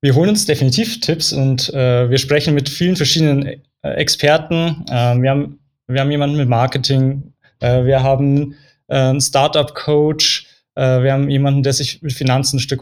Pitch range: 135-150 Hz